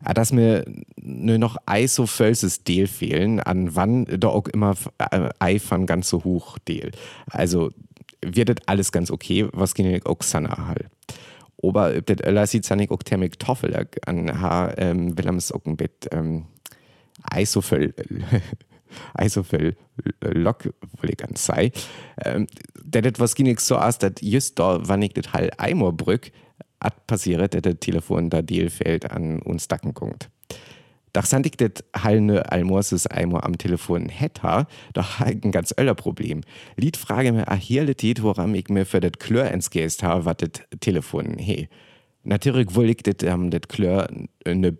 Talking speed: 165 wpm